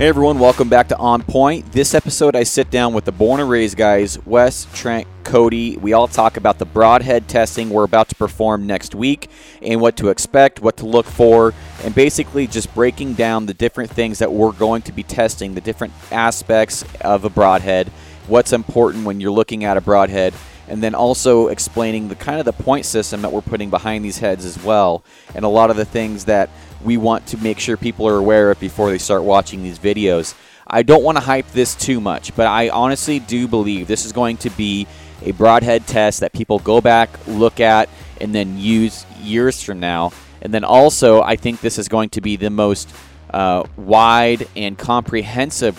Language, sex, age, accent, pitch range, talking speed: English, male, 30-49, American, 100-115 Hz, 210 wpm